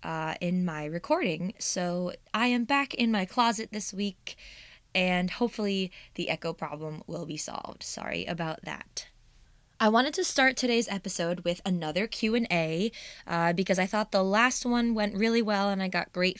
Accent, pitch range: American, 165-205 Hz